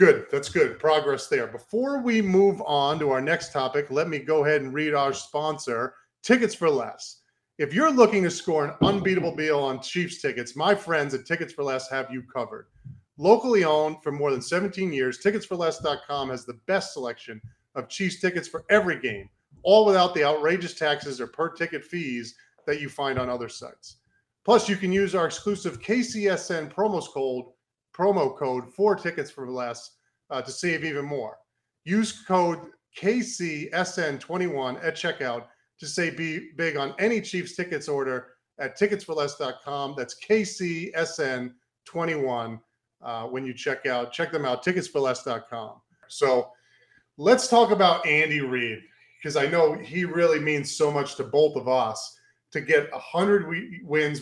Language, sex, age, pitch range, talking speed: English, male, 40-59, 135-185 Hz, 160 wpm